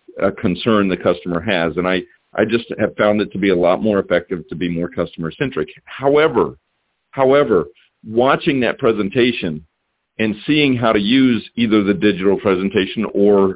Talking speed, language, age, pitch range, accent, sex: 170 wpm, English, 50-69, 100-135 Hz, American, male